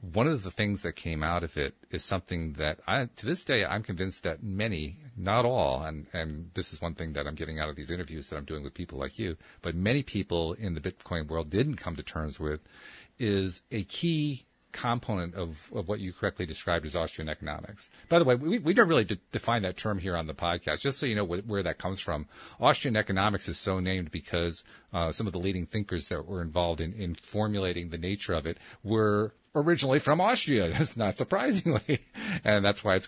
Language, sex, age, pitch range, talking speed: English, male, 40-59, 85-110 Hz, 225 wpm